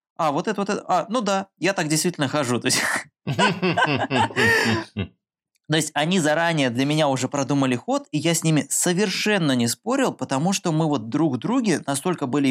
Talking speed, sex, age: 175 wpm, male, 20-39